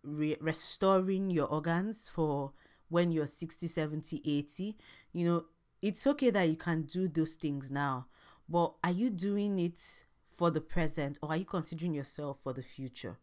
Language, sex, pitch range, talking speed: English, female, 140-185 Hz, 165 wpm